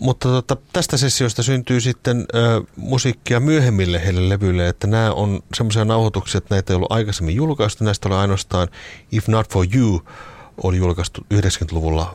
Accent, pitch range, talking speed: native, 90-110 Hz, 160 wpm